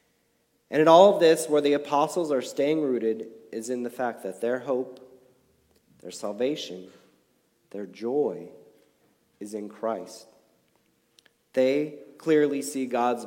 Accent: American